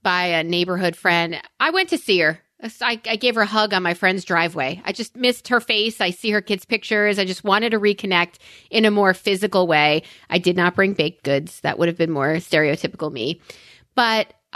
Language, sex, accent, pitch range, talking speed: English, female, American, 180-230 Hz, 220 wpm